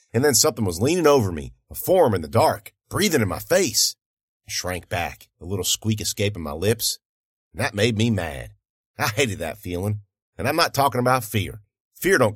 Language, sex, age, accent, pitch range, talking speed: English, male, 50-69, American, 100-140 Hz, 205 wpm